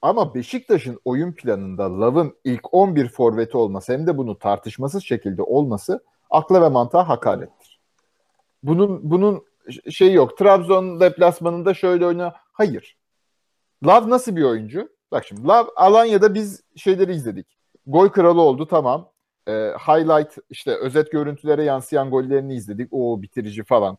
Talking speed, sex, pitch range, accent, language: 135 wpm, male, 125-190 Hz, Turkish, English